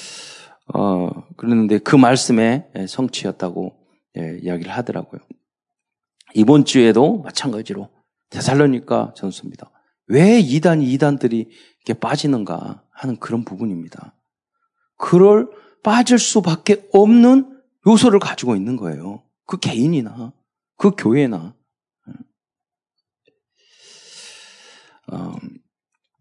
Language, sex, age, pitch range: Korean, male, 40-59, 135-220 Hz